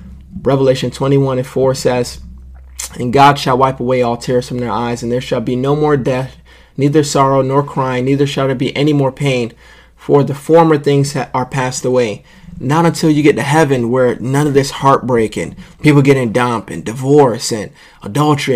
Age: 30-49